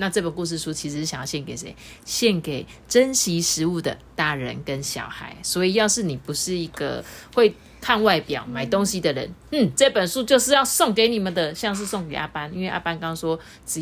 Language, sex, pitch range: Chinese, female, 155-215 Hz